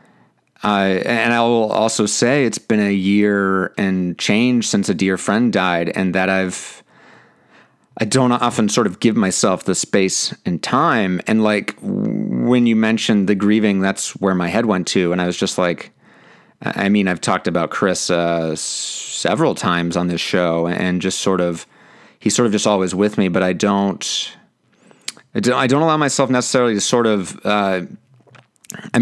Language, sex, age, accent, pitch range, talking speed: English, male, 30-49, American, 95-120 Hz, 180 wpm